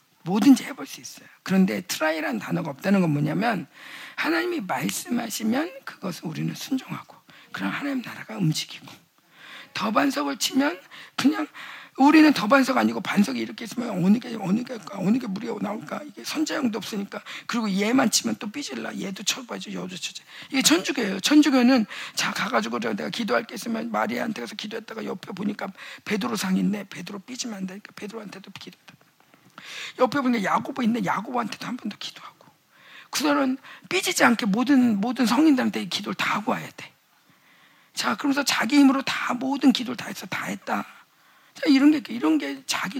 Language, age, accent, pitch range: Korean, 50-69, native, 205-275 Hz